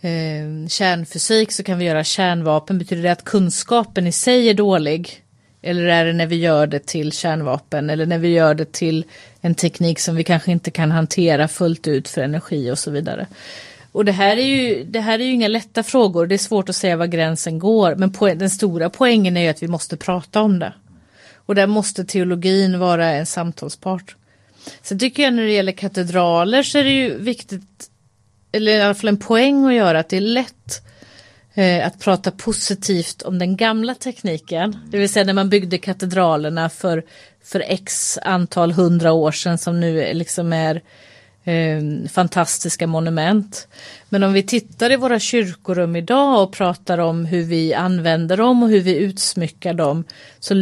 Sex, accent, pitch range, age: female, native, 165-200 Hz, 30-49